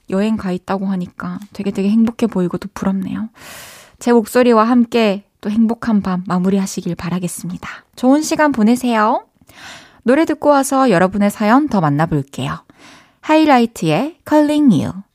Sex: female